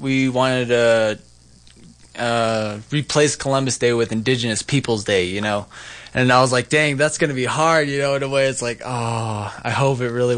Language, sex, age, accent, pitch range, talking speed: English, male, 20-39, American, 110-140 Hz, 210 wpm